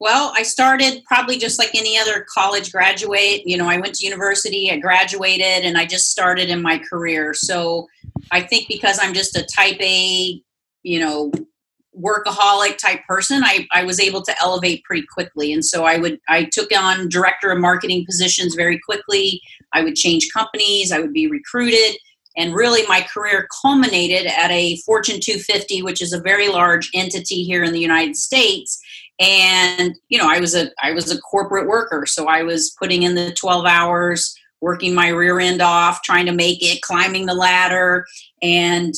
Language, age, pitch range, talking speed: English, 40-59, 175-200 Hz, 185 wpm